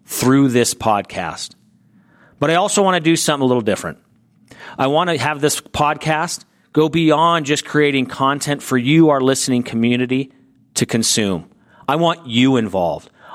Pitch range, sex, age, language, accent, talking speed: 120-150 Hz, male, 40-59, English, American, 155 wpm